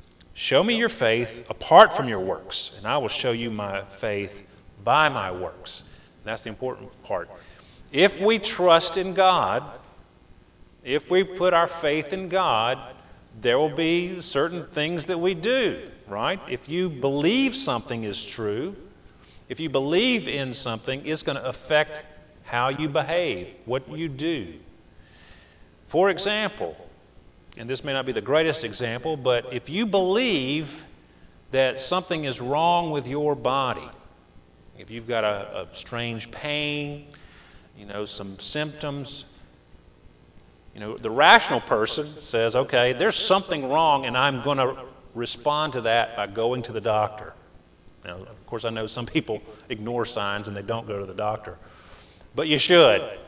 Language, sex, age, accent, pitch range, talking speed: English, male, 40-59, American, 105-160 Hz, 155 wpm